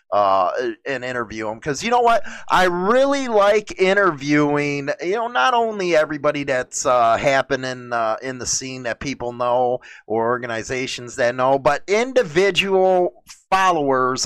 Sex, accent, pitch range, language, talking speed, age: male, American, 135-175 Hz, English, 145 wpm, 30-49